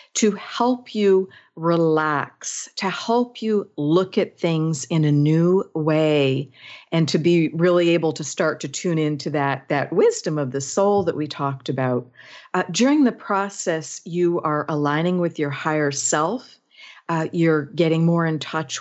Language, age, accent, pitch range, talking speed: English, 50-69, American, 150-185 Hz, 165 wpm